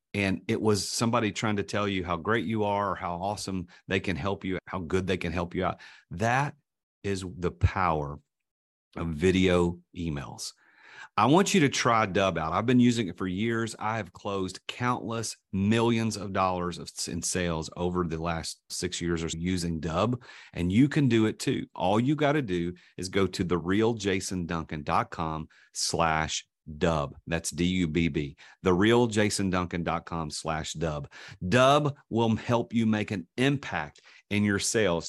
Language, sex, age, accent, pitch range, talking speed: English, male, 40-59, American, 85-115 Hz, 175 wpm